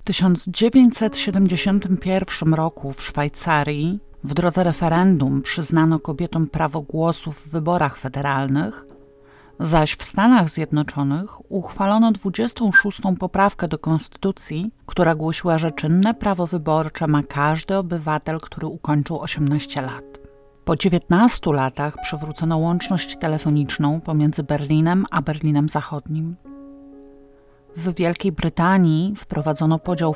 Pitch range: 150-185 Hz